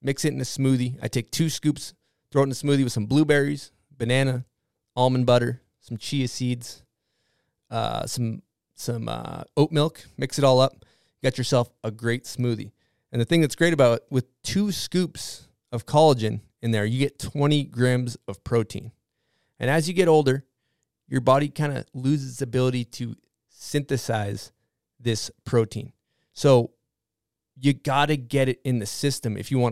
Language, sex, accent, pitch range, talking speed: English, male, American, 115-145 Hz, 175 wpm